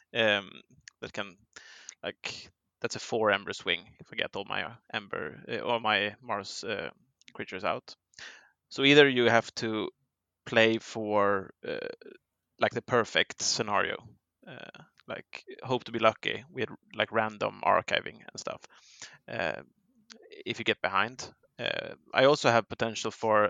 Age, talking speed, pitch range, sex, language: 20-39, 145 wpm, 110-135 Hz, male, English